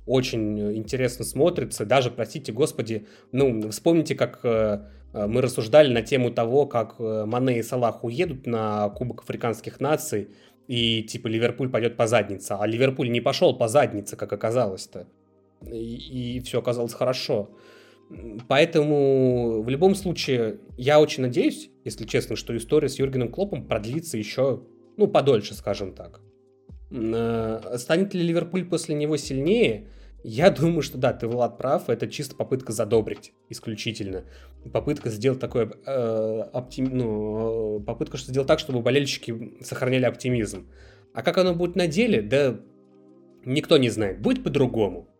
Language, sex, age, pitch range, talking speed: Russian, male, 20-39, 110-140 Hz, 140 wpm